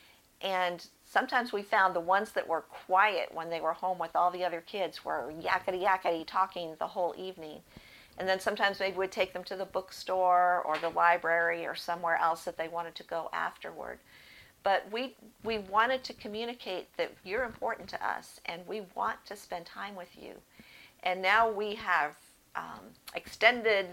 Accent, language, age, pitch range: American, English, 50-69, 175-205 Hz